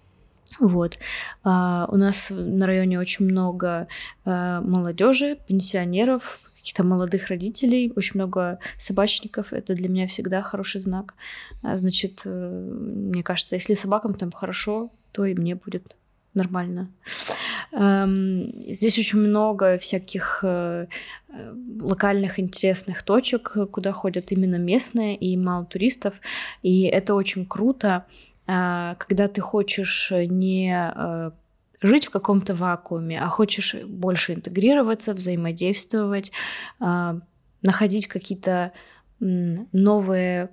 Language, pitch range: Russian, 180-205 Hz